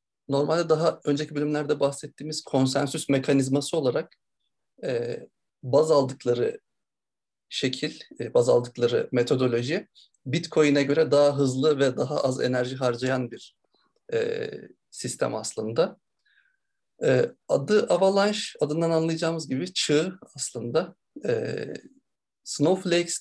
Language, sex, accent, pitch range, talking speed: Turkish, male, native, 135-175 Hz, 90 wpm